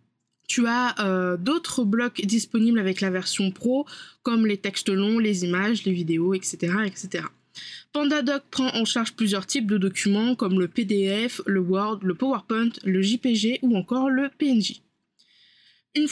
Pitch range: 195-245 Hz